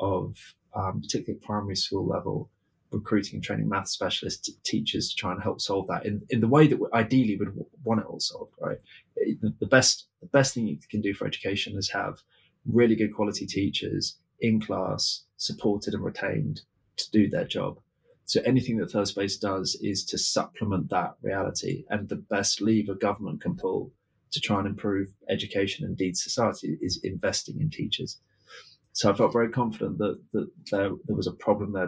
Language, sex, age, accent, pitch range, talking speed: English, male, 20-39, British, 100-125 Hz, 185 wpm